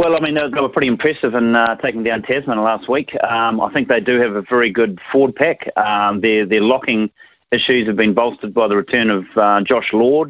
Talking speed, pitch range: 240 wpm, 100-120 Hz